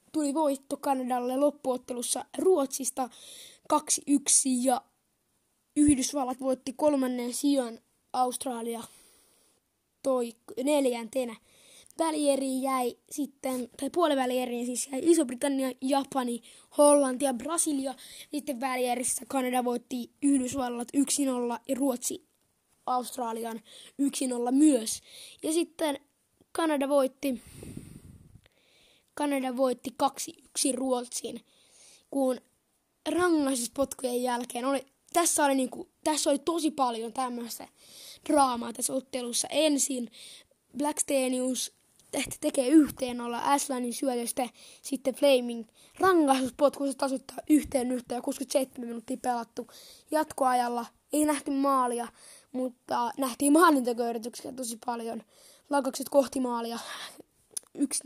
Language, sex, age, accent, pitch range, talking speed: Finnish, female, 20-39, native, 250-285 Hz, 90 wpm